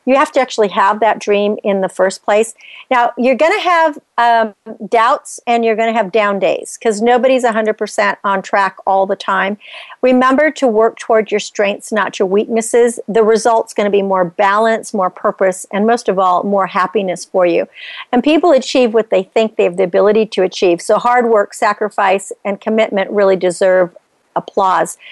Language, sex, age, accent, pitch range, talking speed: English, female, 50-69, American, 205-240 Hz, 190 wpm